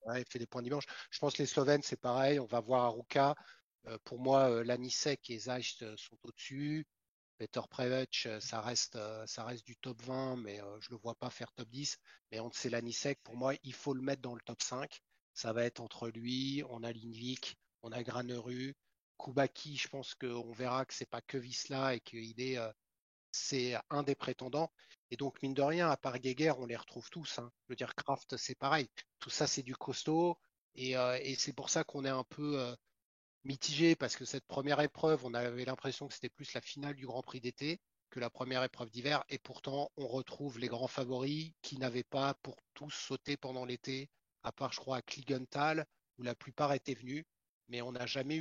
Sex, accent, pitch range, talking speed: male, French, 120-140 Hz, 225 wpm